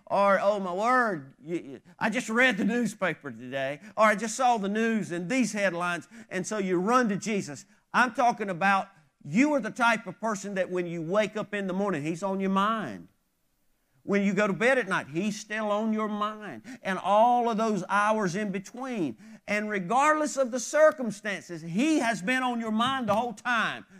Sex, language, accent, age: male, English, American, 50-69